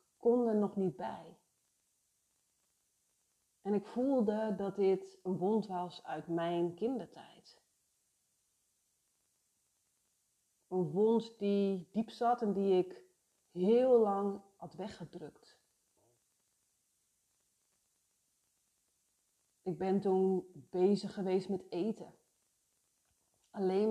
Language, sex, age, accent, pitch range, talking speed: Dutch, female, 40-59, Dutch, 180-210 Hz, 90 wpm